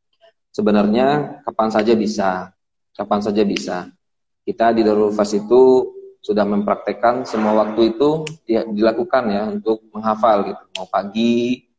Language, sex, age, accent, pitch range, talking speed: Indonesian, male, 20-39, native, 100-115 Hz, 120 wpm